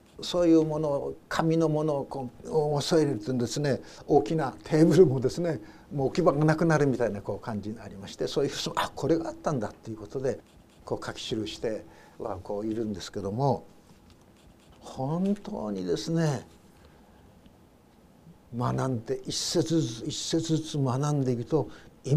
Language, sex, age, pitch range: Japanese, male, 60-79, 120-165 Hz